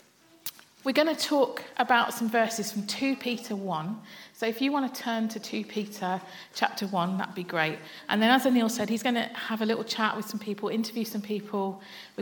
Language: English